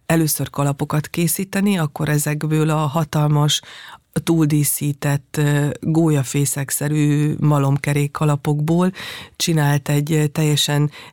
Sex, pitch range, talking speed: female, 145-165 Hz, 75 wpm